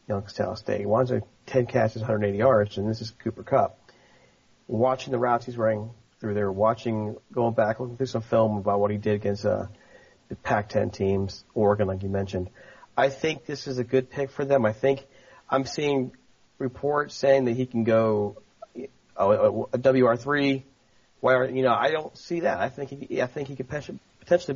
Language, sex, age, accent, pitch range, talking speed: English, male, 40-59, American, 105-135 Hz, 195 wpm